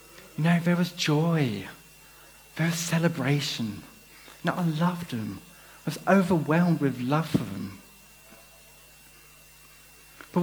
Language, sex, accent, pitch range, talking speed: English, male, British, 140-175 Hz, 120 wpm